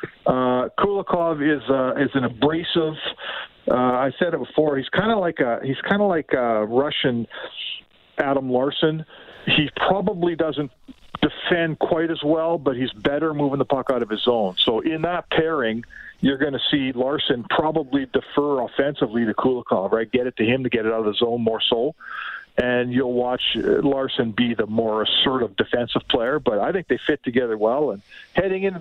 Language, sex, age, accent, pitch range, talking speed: English, male, 50-69, American, 125-150 Hz, 185 wpm